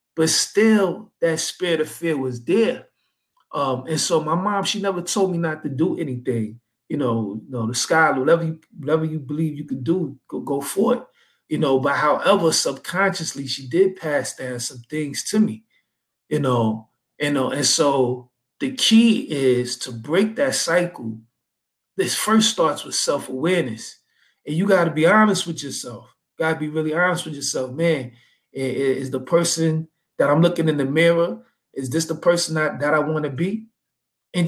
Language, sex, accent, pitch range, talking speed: English, male, American, 130-175 Hz, 195 wpm